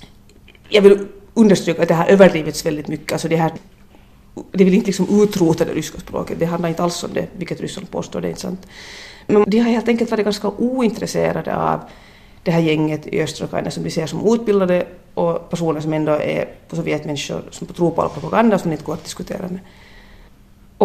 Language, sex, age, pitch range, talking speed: Finnish, female, 40-59, 160-190 Hz, 200 wpm